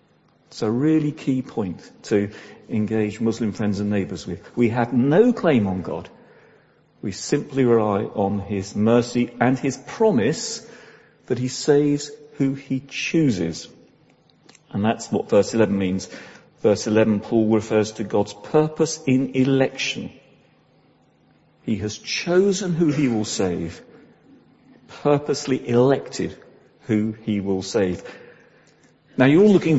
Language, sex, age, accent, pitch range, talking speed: English, male, 50-69, British, 115-185 Hz, 130 wpm